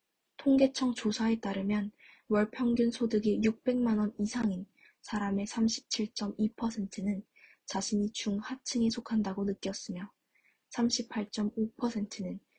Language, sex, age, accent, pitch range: Korean, female, 20-39, native, 200-230 Hz